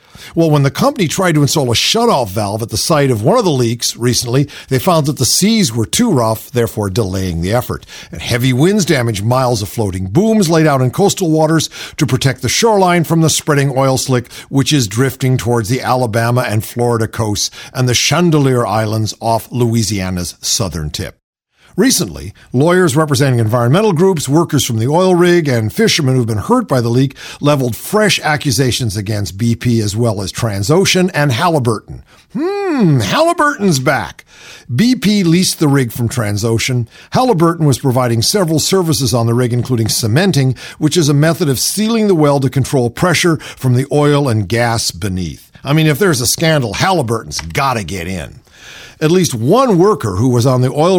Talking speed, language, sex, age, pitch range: 180 wpm, English, male, 50-69, 120-170 Hz